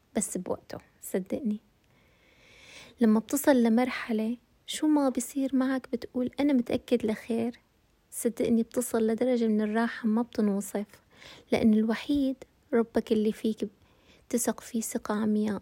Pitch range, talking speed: 225-265 Hz, 115 wpm